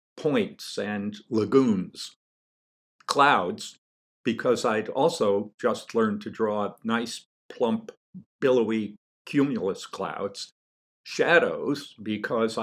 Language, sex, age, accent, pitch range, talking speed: English, male, 50-69, American, 105-165 Hz, 85 wpm